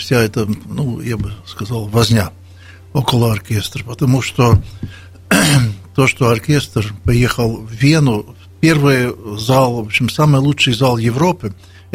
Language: Russian